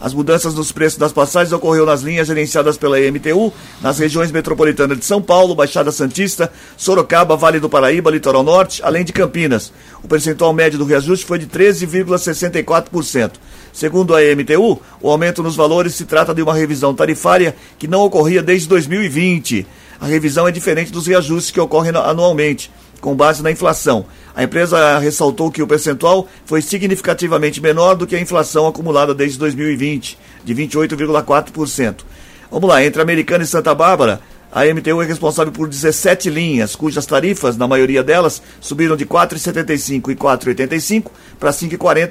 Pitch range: 145-175 Hz